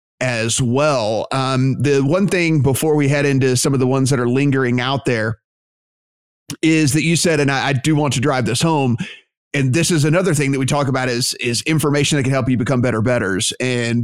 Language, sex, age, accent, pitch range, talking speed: English, male, 30-49, American, 135-155 Hz, 220 wpm